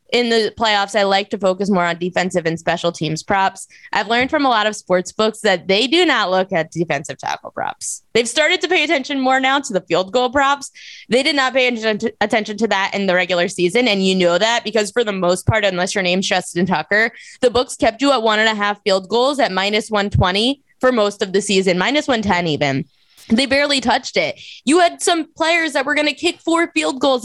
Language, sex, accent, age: English, female, American, 20-39